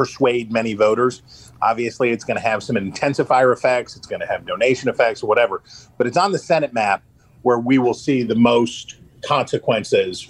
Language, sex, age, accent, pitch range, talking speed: English, male, 40-59, American, 115-130 Hz, 185 wpm